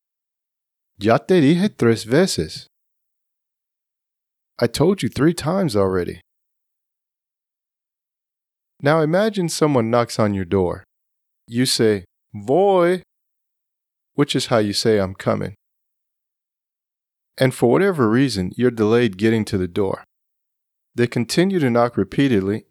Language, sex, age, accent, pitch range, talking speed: English, male, 40-59, American, 110-155 Hz, 115 wpm